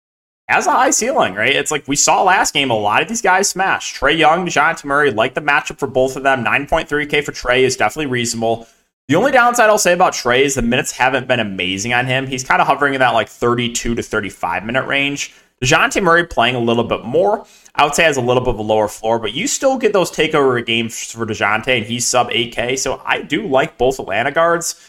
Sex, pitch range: male, 120-160 Hz